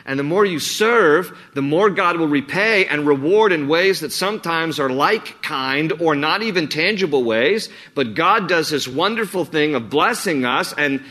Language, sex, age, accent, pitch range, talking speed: English, male, 50-69, American, 125-160 Hz, 185 wpm